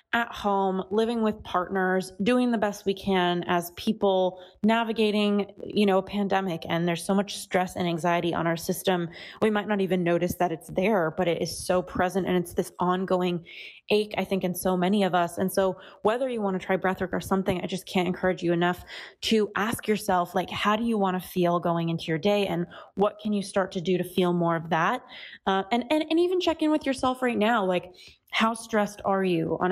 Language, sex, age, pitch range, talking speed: English, female, 20-39, 180-210 Hz, 225 wpm